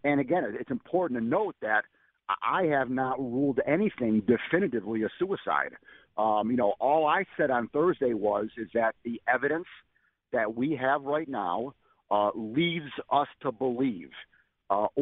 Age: 50-69